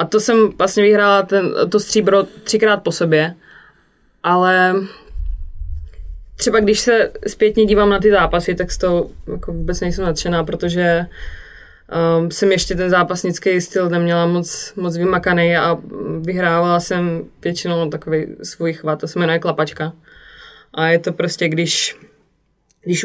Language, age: Czech, 20-39